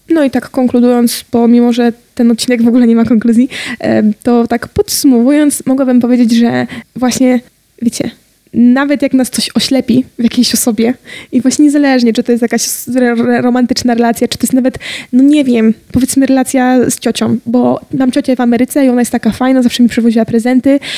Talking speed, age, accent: 180 wpm, 20-39, native